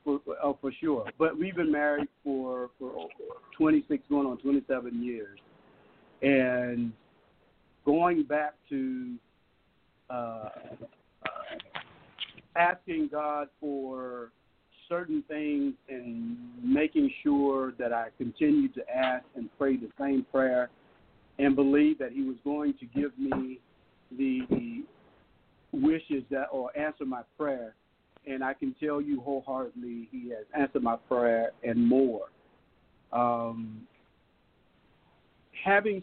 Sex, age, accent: male, 50-69, American